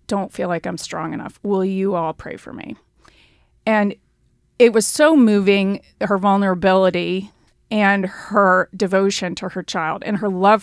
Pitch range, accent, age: 185-225 Hz, American, 30-49